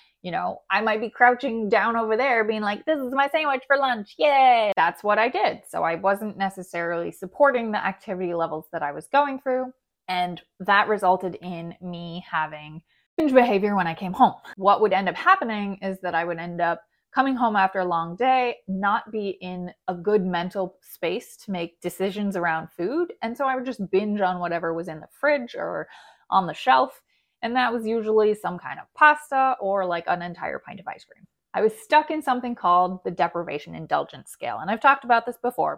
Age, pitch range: 20-39, 175-245 Hz